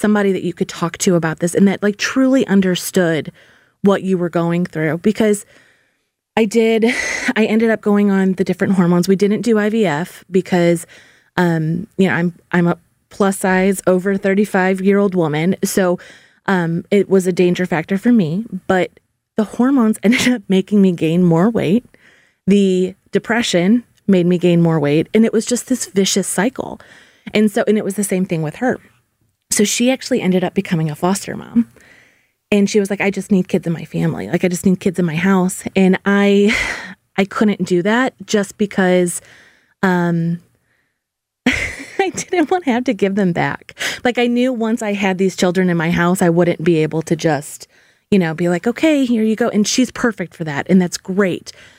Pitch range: 175-215 Hz